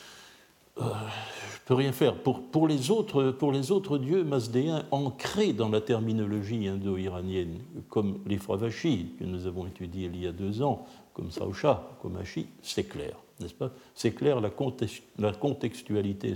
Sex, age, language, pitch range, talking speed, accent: male, 60-79, French, 100-125 Hz, 170 wpm, French